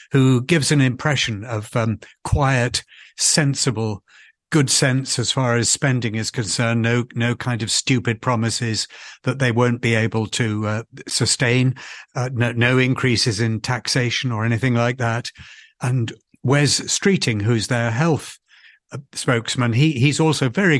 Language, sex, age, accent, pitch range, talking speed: English, male, 60-79, British, 115-145 Hz, 145 wpm